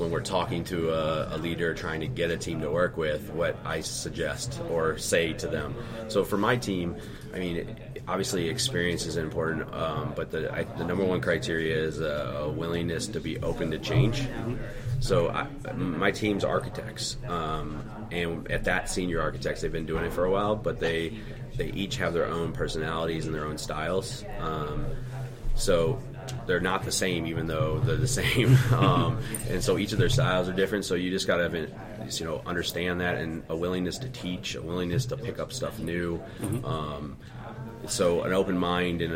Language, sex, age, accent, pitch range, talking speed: English, male, 30-49, American, 80-115 Hz, 190 wpm